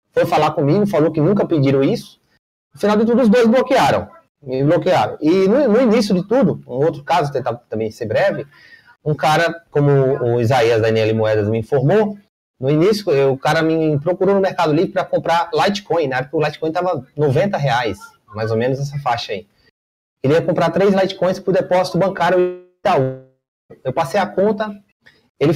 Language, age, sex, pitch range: Portuguese, 30-49, male, 145-205 Hz